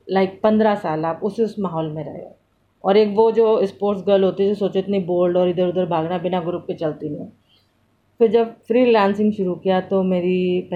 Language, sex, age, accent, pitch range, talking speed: English, female, 30-49, Indian, 175-215 Hz, 225 wpm